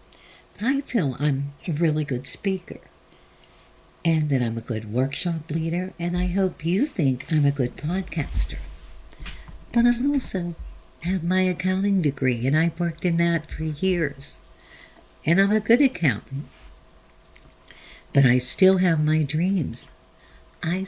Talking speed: 140 wpm